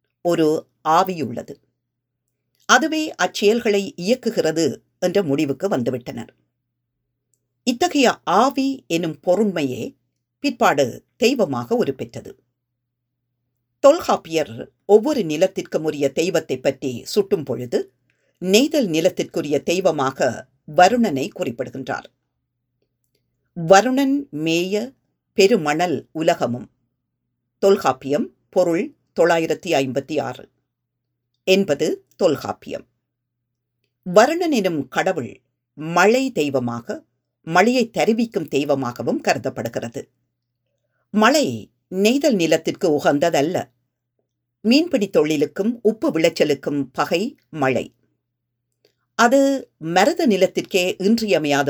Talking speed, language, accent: 70 wpm, Tamil, native